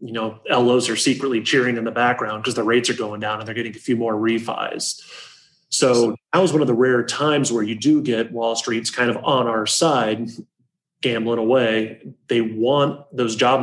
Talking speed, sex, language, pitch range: 205 wpm, male, English, 115-135 Hz